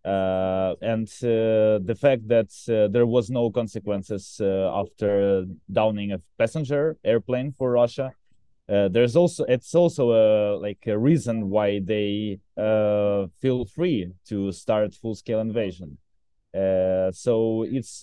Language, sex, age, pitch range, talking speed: English, male, 20-39, 95-115 Hz, 135 wpm